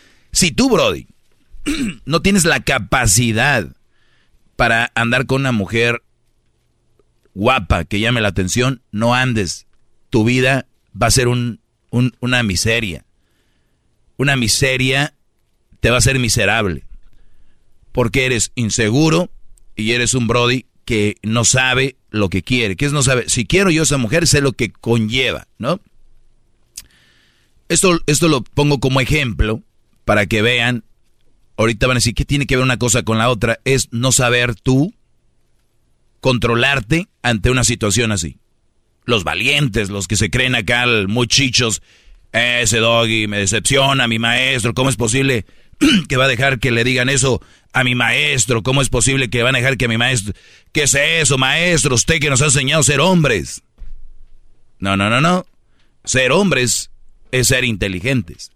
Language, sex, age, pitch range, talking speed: Spanish, male, 40-59, 115-135 Hz, 160 wpm